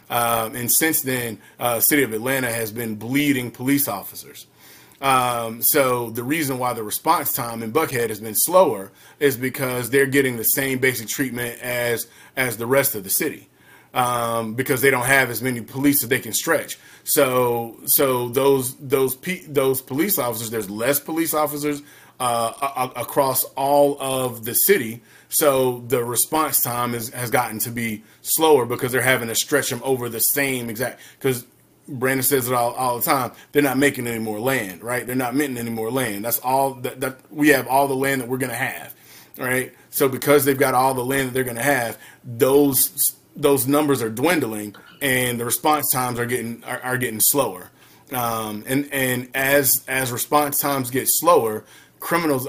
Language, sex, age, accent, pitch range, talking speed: English, male, 30-49, American, 120-140 Hz, 190 wpm